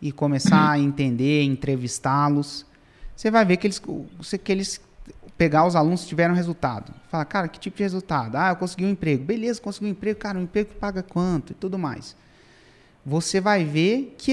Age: 30-49